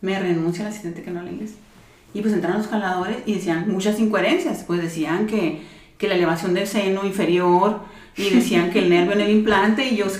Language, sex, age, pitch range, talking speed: Spanish, female, 30-49, 180-225 Hz, 220 wpm